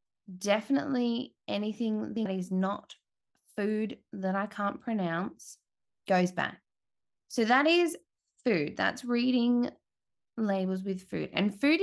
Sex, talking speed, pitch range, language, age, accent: female, 115 wpm, 180-220 Hz, English, 10-29, Australian